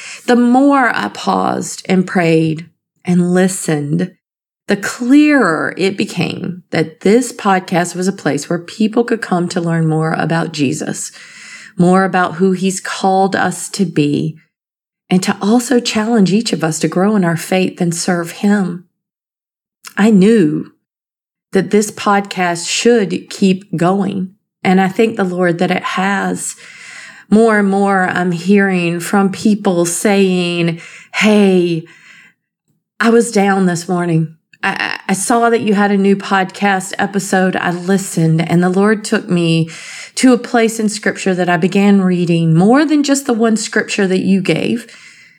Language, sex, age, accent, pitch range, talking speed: English, female, 40-59, American, 175-210 Hz, 150 wpm